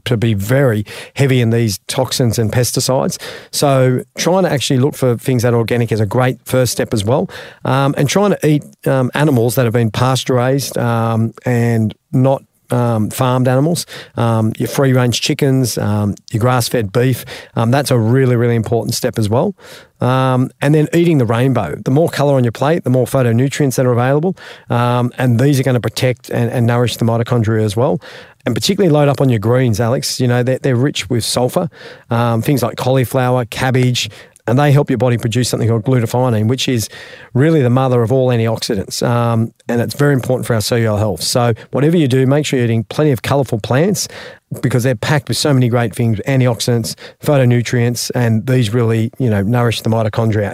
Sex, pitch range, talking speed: male, 115-135 Hz, 200 wpm